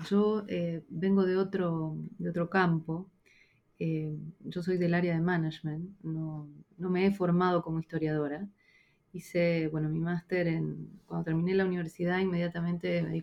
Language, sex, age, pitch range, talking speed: Spanish, female, 30-49, 165-195 Hz, 150 wpm